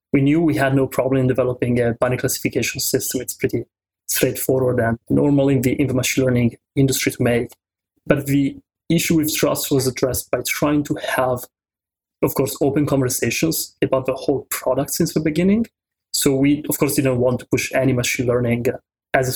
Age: 20-39